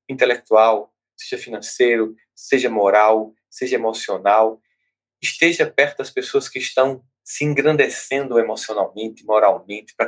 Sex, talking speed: male, 105 wpm